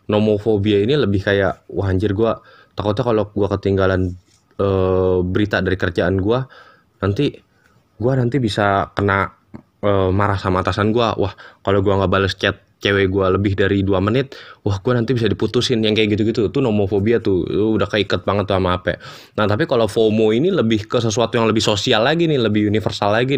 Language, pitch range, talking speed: Indonesian, 95-110 Hz, 180 wpm